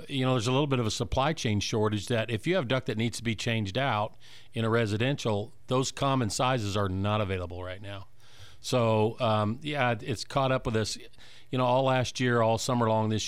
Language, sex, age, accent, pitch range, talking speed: English, male, 50-69, American, 105-120 Hz, 225 wpm